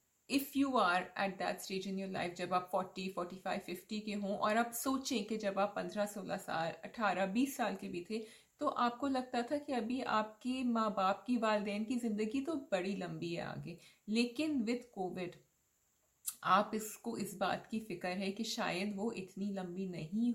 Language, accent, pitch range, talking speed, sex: English, Indian, 195-245 Hz, 170 wpm, female